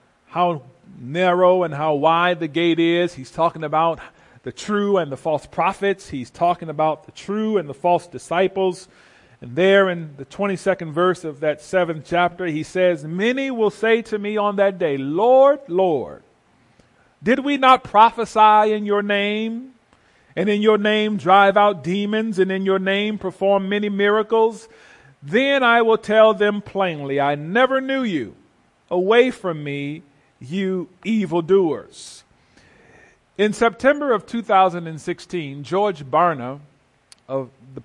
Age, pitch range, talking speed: 40-59, 160-210 Hz, 145 wpm